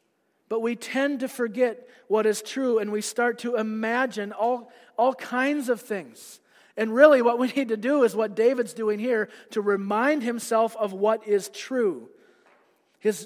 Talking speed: 170 wpm